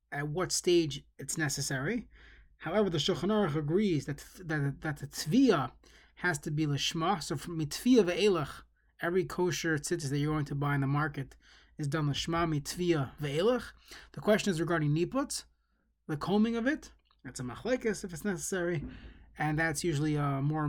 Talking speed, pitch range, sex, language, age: 170 wpm, 145-185 Hz, male, English, 20-39